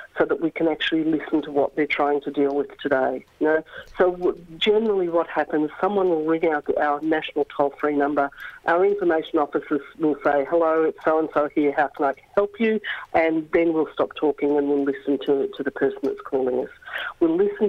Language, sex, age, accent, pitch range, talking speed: English, female, 50-69, Australian, 145-165 Hz, 200 wpm